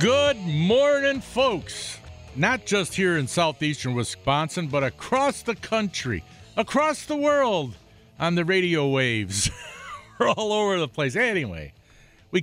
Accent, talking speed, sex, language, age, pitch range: American, 130 wpm, male, English, 50-69, 110-155 Hz